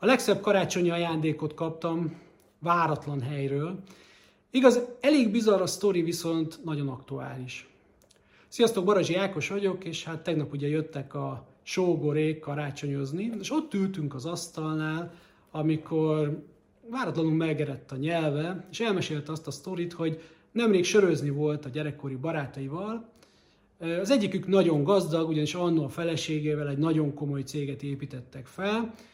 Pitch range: 145-180 Hz